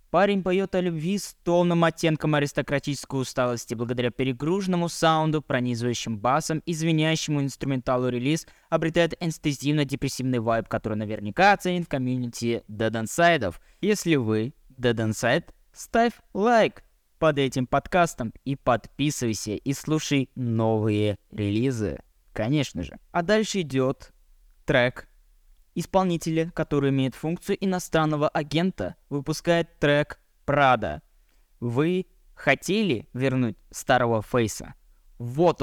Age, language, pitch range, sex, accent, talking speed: 20-39, Russian, 120-165 Hz, male, native, 105 wpm